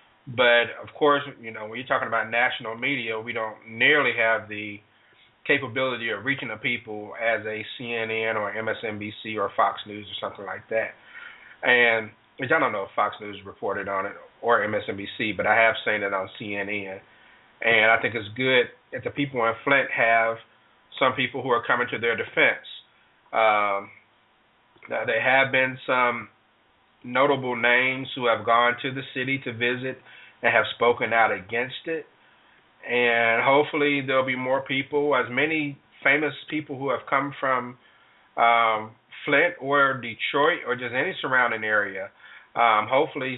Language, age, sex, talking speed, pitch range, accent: English, 30-49, male, 165 wpm, 110-135 Hz, American